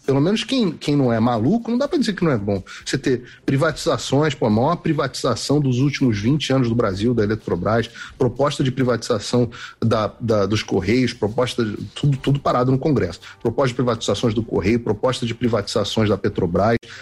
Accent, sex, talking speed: Brazilian, male, 175 wpm